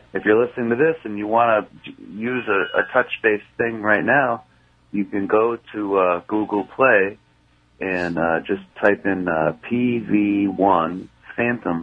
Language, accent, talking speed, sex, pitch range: English, American, 155 wpm, male, 85-110 Hz